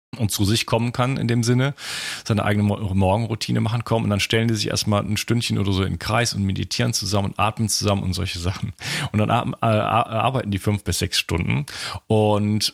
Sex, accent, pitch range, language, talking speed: male, German, 100-120 Hz, German, 205 wpm